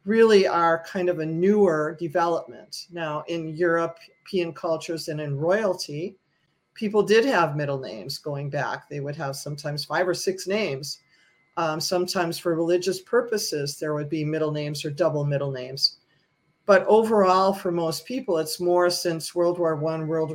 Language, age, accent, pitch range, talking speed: English, 40-59, American, 155-180 Hz, 160 wpm